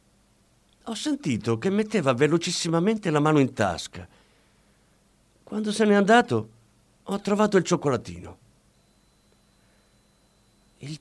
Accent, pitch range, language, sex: native, 105-155 Hz, Italian, male